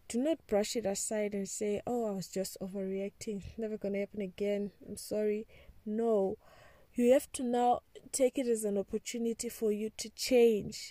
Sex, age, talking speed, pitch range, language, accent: female, 20-39, 180 wpm, 210-240 Hz, English, South African